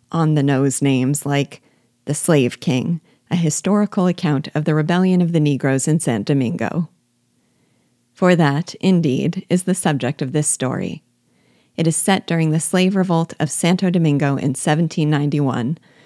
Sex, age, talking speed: female, 40-59, 145 wpm